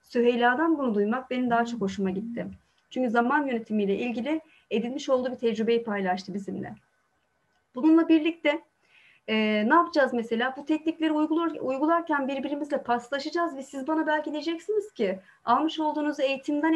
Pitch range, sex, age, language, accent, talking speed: 235-305 Hz, female, 30-49, Turkish, native, 140 wpm